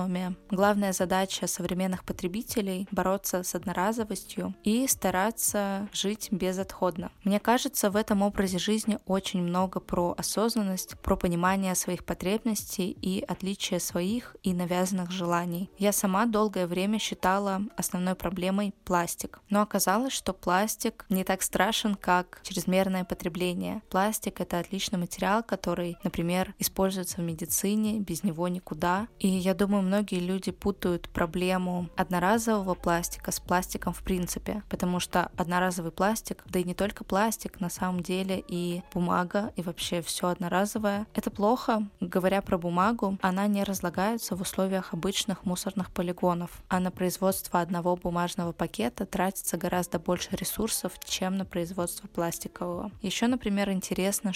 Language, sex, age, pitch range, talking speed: Russian, female, 20-39, 180-205 Hz, 140 wpm